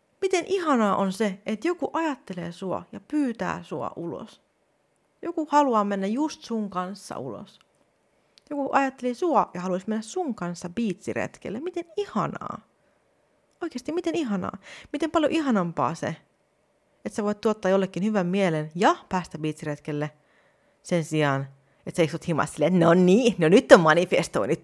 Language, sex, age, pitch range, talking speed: Finnish, female, 30-49, 160-275 Hz, 145 wpm